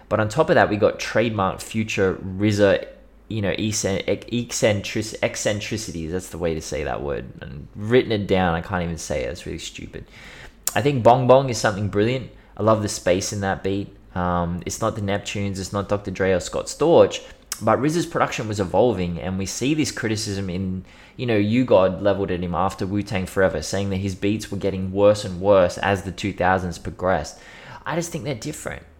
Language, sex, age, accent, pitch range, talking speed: English, male, 20-39, Australian, 95-110 Hz, 205 wpm